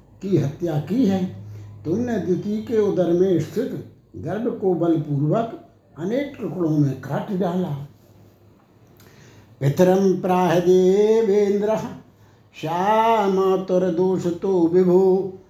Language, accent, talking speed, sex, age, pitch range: Hindi, native, 90 wpm, male, 60-79, 155-200 Hz